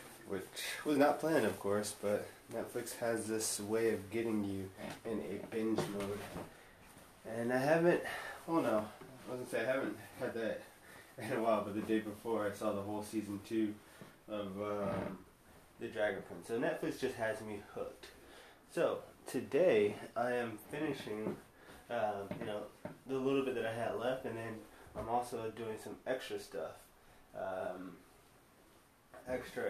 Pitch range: 105-130 Hz